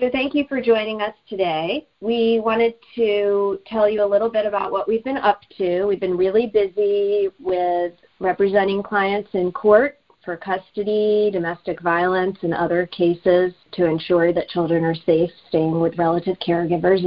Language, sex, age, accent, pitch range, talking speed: English, female, 40-59, American, 170-200 Hz, 165 wpm